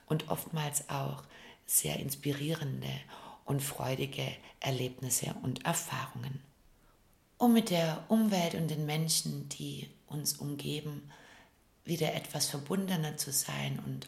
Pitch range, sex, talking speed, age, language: 125-155 Hz, female, 110 wpm, 60-79, German